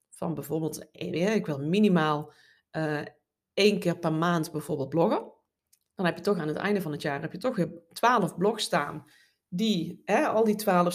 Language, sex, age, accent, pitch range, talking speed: Dutch, female, 20-39, Dutch, 170-205 Hz, 185 wpm